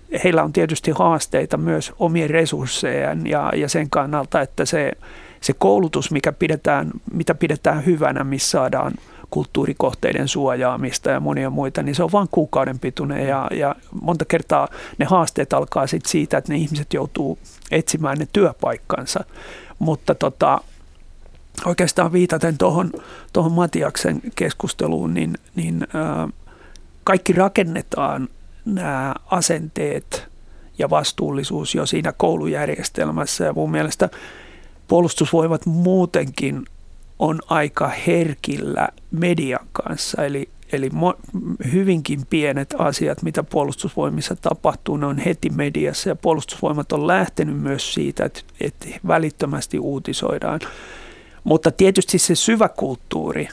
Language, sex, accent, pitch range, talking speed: Finnish, male, native, 135-175 Hz, 115 wpm